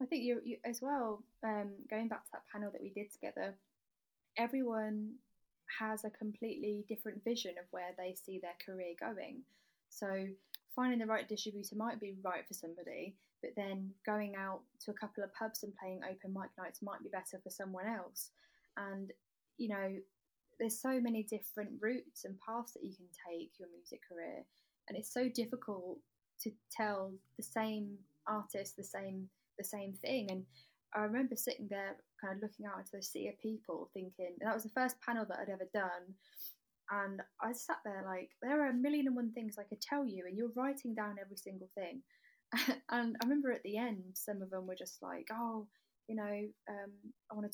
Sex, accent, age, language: female, British, 10-29, English